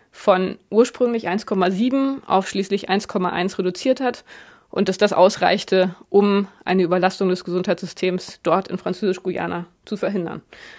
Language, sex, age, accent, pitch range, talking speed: German, female, 20-39, German, 190-230 Hz, 120 wpm